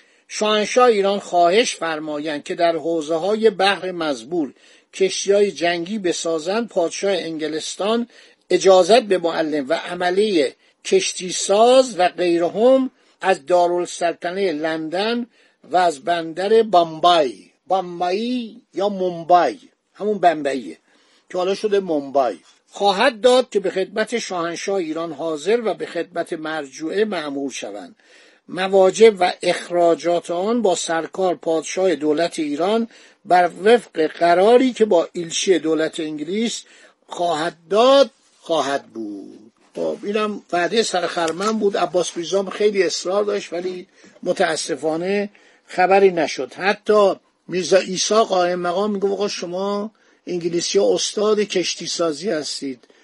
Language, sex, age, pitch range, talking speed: Persian, male, 60-79, 170-215 Hz, 110 wpm